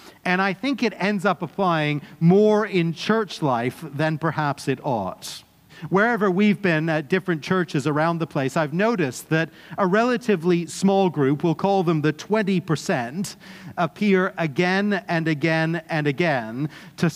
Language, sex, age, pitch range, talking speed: English, male, 50-69, 150-185 Hz, 150 wpm